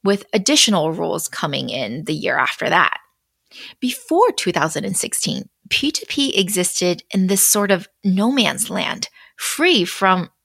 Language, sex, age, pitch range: Chinese, female, 30-49, 190-265 Hz